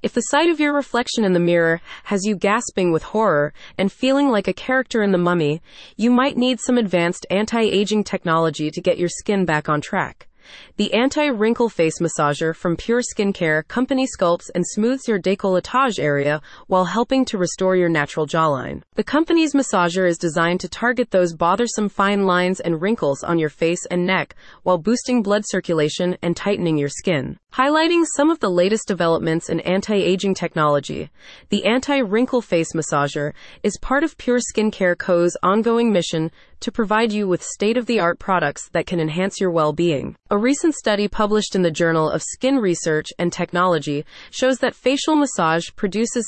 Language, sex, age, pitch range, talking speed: English, female, 20-39, 170-235 Hz, 180 wpm